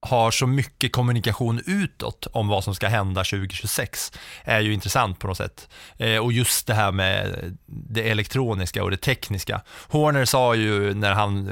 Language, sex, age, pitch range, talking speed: English, male, 20-39, 95-115 Hz, 165 wpm